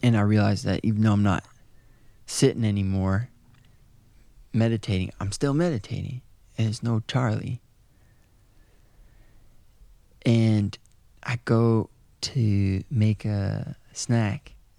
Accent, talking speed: American, 100 wpm